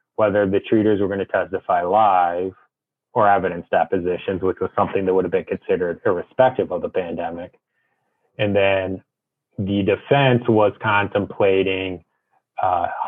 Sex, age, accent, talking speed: male, 30-49, American, 140 wpm